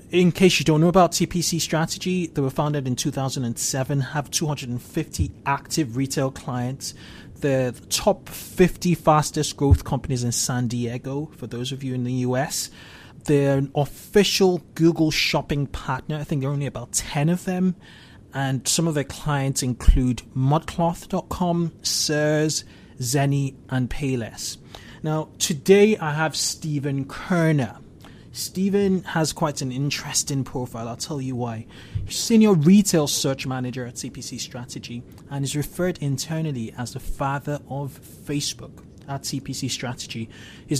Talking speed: 145 wpm